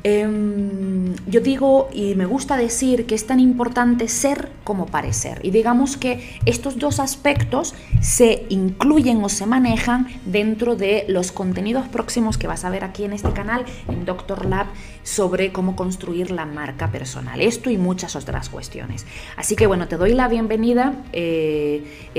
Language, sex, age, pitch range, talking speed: Spanish, female, 20-39, 160-225 Hz, 160 wpm